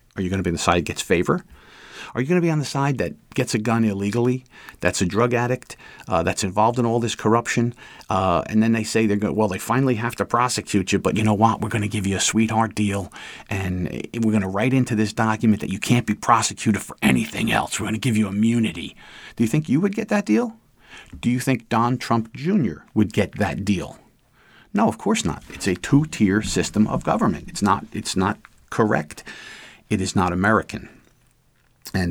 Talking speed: 220 wpm